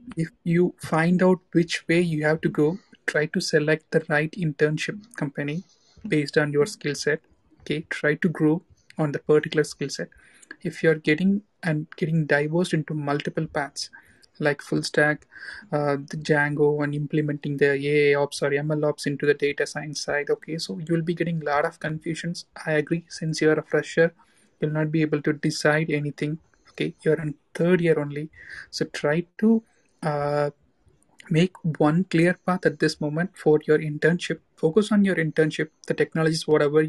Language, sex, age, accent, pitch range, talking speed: Tamil, male, 30-49, native, 150-175 Hz, 180 wpm